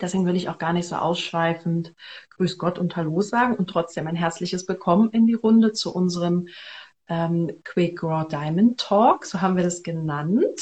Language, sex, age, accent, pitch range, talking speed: German, female, 40-59, German, 170-215 Hz, 185 wpm